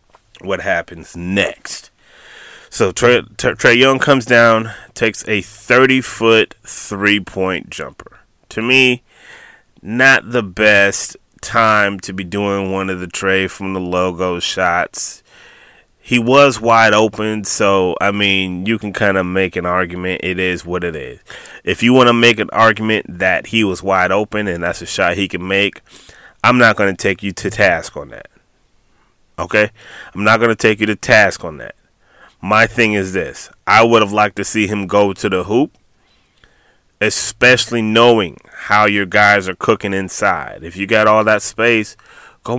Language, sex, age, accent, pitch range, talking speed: English, male, 30-49, American, 95-115 Hz, 170 wpm